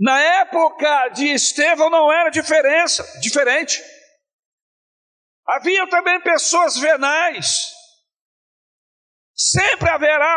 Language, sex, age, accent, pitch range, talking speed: Portuguese, male, 50-69, Brazilian, 260-330 Hz, 80 wpm